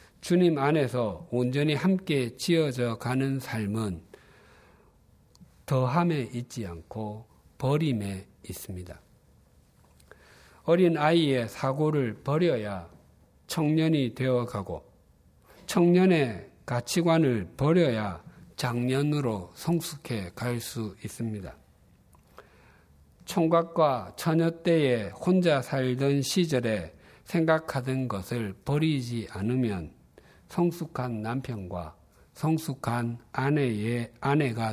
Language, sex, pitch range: Korean, male, 100-145 Hz